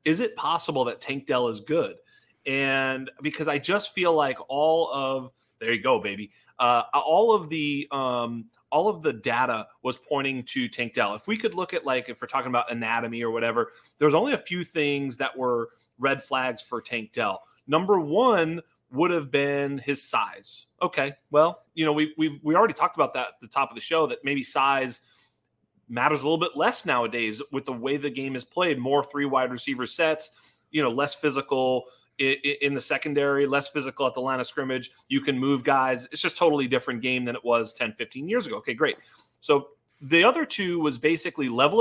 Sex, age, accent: male, 30-49, American